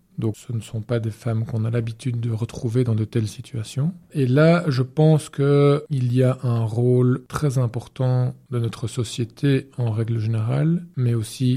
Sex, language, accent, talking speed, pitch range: male, French, French, 180 wpm, 115-135 Hz